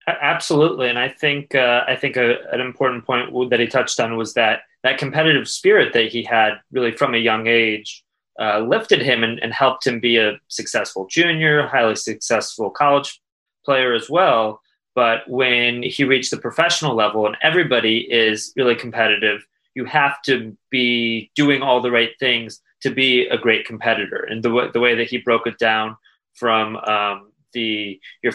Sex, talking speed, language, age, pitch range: male, 180 wpm, English, 20-39, 110-130 Hz